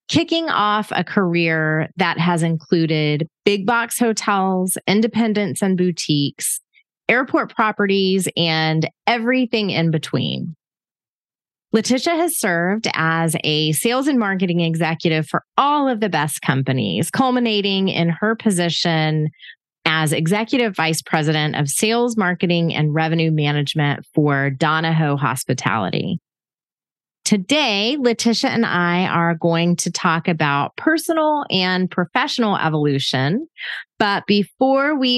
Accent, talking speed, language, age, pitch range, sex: American, 115 wpm, English, 30-49, 160-230 Hz, female